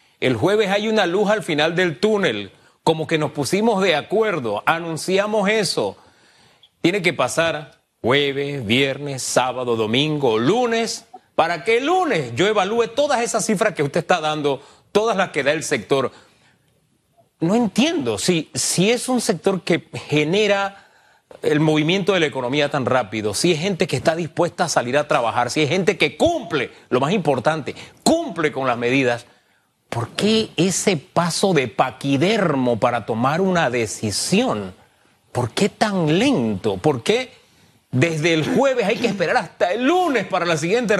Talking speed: 160 wpm